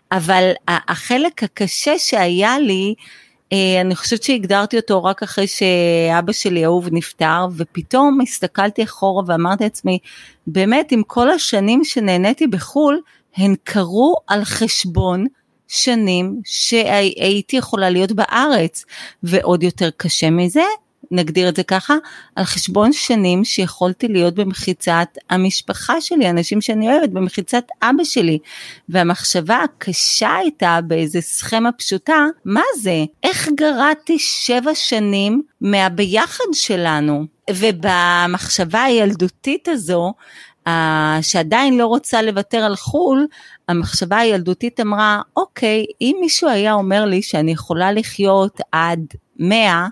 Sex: female